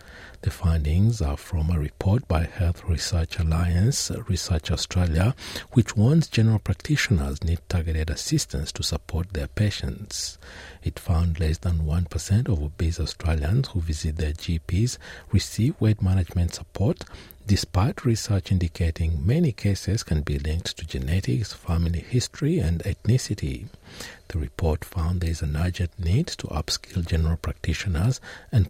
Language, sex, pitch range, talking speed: English, male, 80-110 Hz, 140 wpm